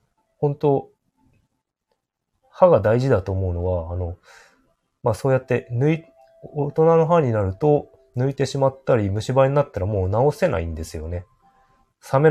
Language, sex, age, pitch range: Japanese, male, 20-39, 95-140 Hz